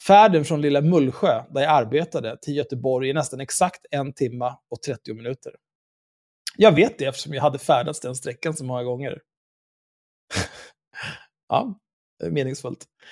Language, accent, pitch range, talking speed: Swedish, native, 135-170 Hz, 150 wpm